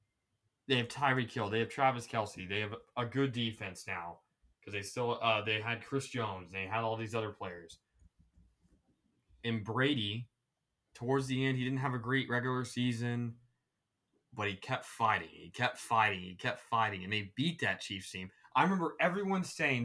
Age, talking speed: 20-39, 185 wpm